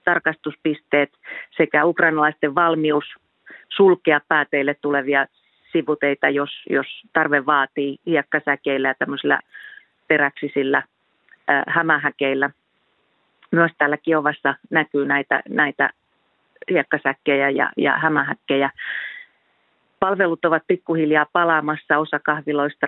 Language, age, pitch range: Finnish, 40-59, 145-165 Hz